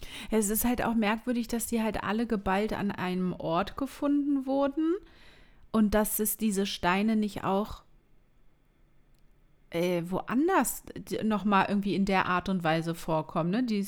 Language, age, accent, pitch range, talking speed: German, 30-49, German, 185-240 Hz, 145 wpm